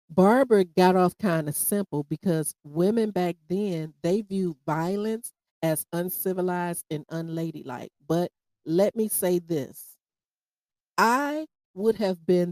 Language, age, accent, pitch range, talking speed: English, 40-59, American, 160-200 Hz, 125 wpm